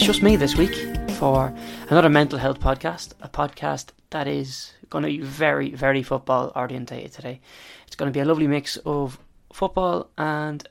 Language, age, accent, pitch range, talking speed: English, 20-39, Irish, 130-150 Hz, 180 wpm